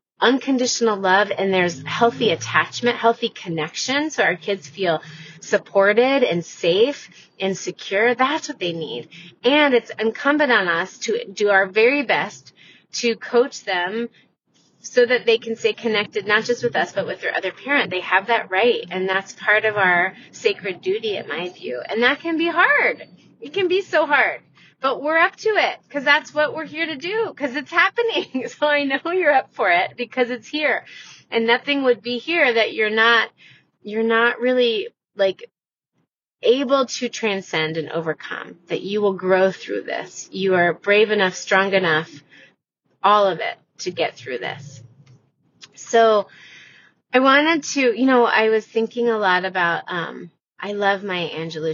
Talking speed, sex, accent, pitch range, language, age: 175 wpm, female, American, 190-270 Hz, English, 30-49